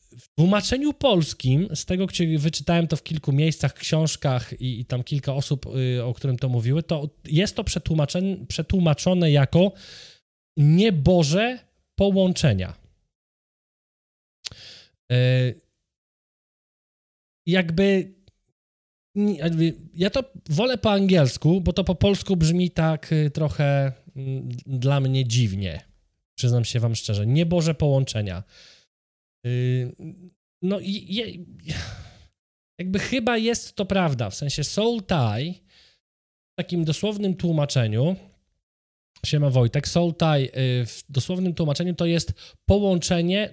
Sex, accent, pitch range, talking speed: male, native, 125-180 Hz, 105 wpm